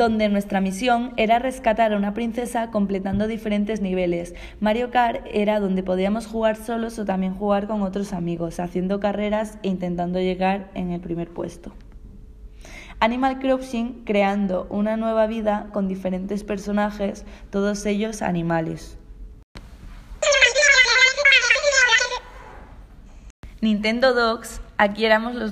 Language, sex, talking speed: Spanish, female, 120 wpm